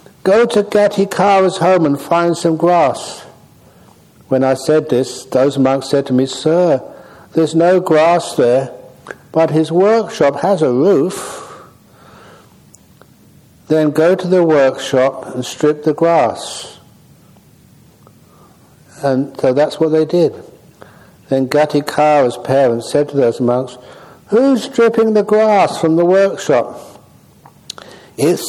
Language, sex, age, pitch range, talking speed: English, male, 60-79, 140-190 Hz, 120 wpm